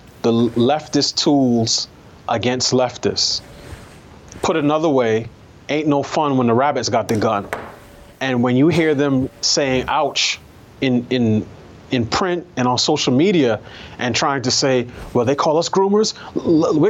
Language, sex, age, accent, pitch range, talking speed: English, male, 30-49, American, 120-140 Hz, 150 wpm